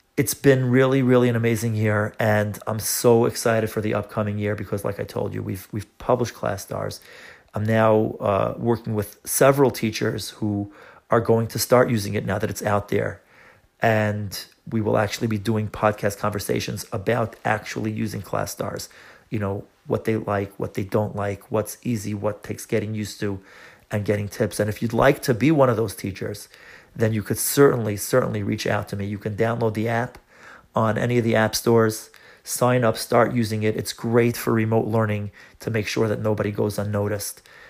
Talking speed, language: 195 wpm, English